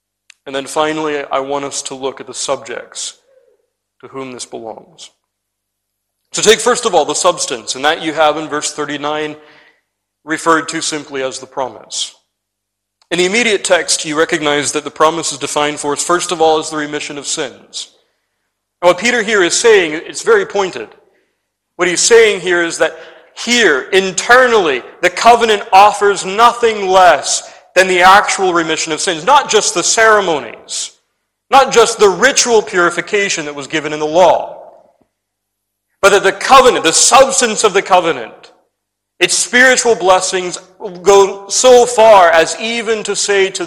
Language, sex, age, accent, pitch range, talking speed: English, male, 40-59, American, 150-215 Hz, 165 wpm